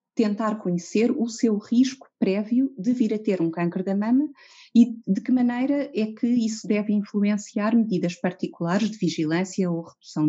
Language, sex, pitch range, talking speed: Portuguese, female, 170-220 Hz, 170 wpm